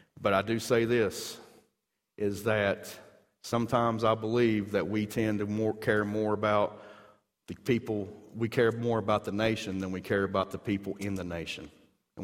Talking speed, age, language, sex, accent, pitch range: 175 wpm, 40-59, English, male, American, 100-120 Hz